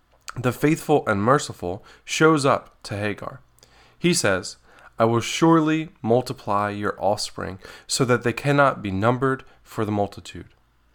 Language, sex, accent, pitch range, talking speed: English, male, American, 105-130 Hz, 135 wpm